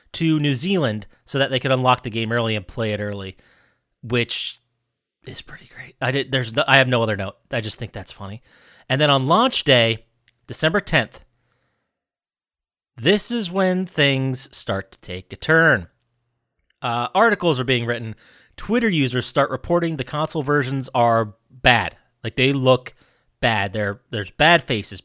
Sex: male